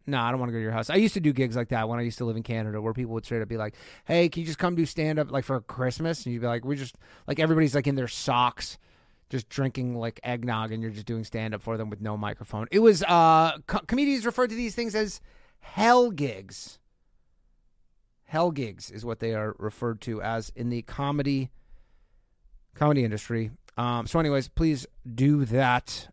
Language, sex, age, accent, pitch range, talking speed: English, male, 30-49, American, 115-160 Hz, 225 wpm